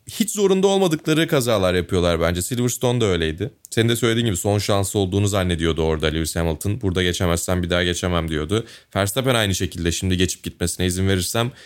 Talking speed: 170 wpm